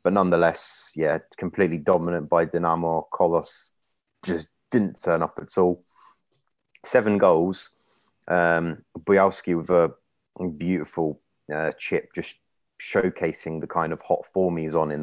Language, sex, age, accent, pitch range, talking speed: English, male, 30-49, British, 80-85 Hz, 130 wpm